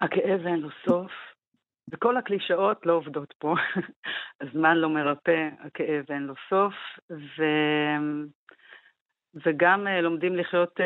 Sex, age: female, 50-69